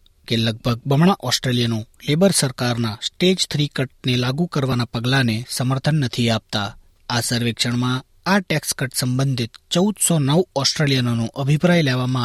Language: Gujarati